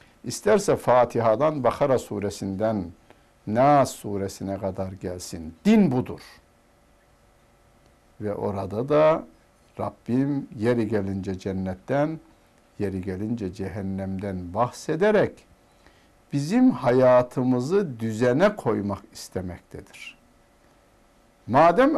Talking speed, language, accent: 75 wpm, Turkish, native